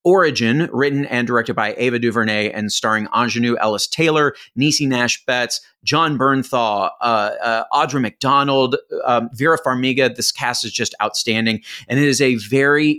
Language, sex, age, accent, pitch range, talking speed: English, male, 30-49, American, 115-155 Hz, 155 wpm